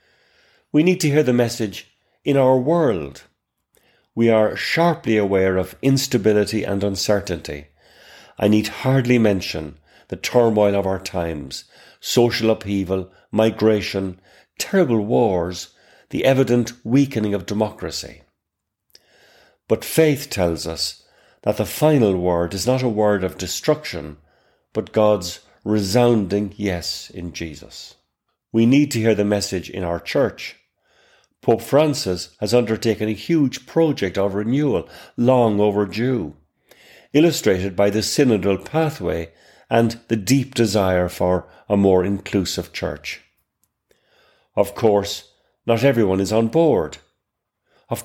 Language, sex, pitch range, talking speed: English, male, 95-120 Hz, 120 wpm